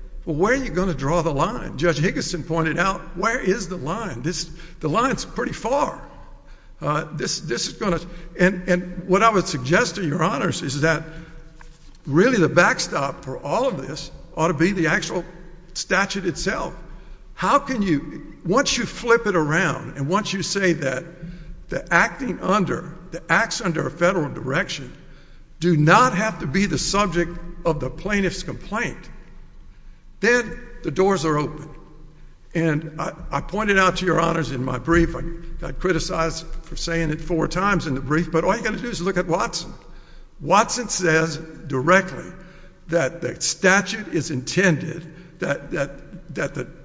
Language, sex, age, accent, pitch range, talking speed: English, male, 60-79, American, 160-185 Hz, 170 wpm